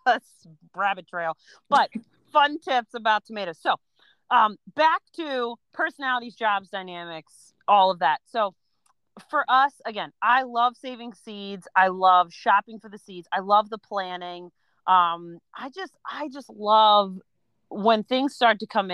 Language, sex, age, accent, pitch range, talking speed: English, female, 30-49, American, 180-255 Hz, 150 wpm